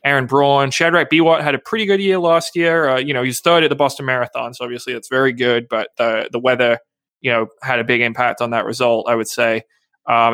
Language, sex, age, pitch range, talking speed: English, male, 20-39, 120-140 Hz, 250 wpm